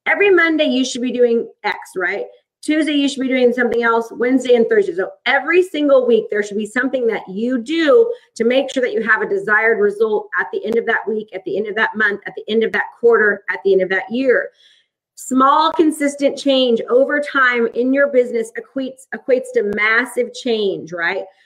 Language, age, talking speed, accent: English, 30-49, 215 wpm, American